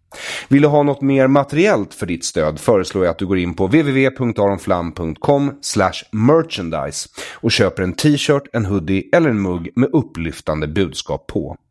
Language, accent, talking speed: English, Swedish, 155 wpm